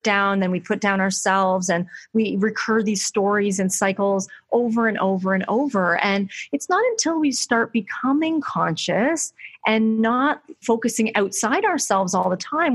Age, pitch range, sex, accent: 30-49, 200-285 Hz, female, American